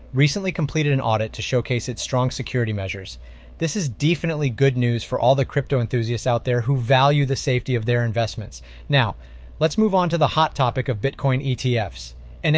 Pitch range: 110-155 Hz